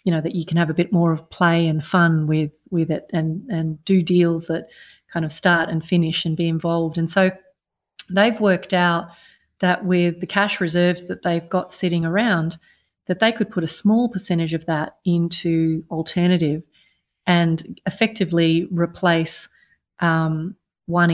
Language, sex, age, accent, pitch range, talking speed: English, female, 30-49, Australian, 165-185 Hz, 170 wpm